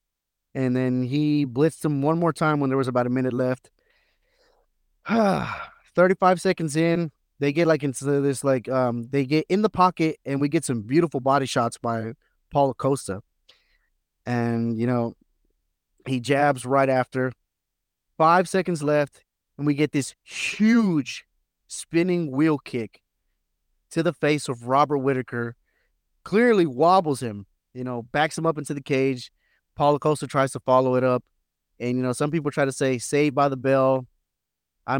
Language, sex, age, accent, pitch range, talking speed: English, male, 30-49, American, 125-165 Hz, 160 wpm